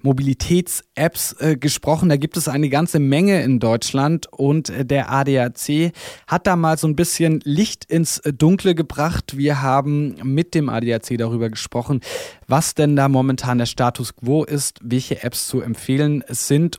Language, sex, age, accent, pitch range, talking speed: German, male, 20-39, German, 130-165 Hz, 155 wpm